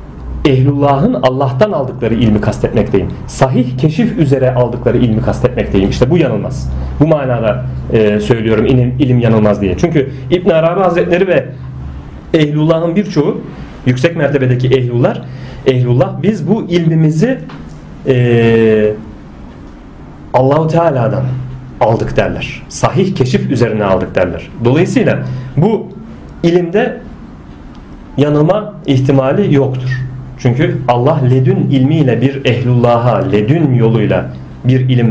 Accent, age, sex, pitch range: native, 40-59, male, 115-145 Hz